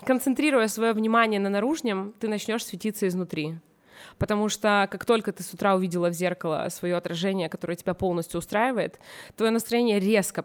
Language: Russian